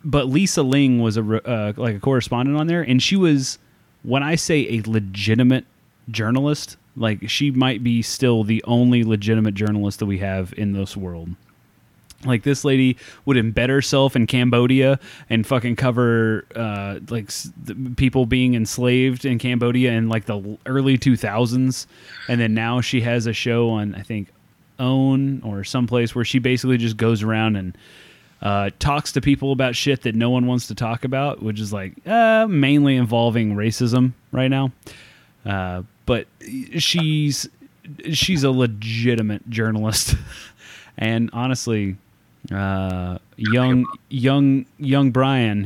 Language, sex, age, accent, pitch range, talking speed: English, male, 30-49, American, 110-130 Hz, 155 wpm